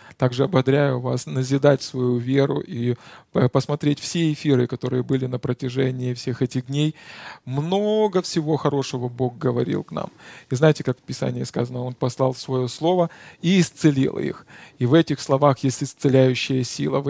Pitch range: 130-160 Hz